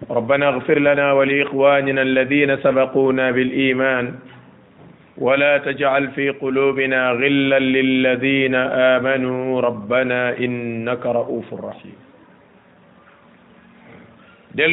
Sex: male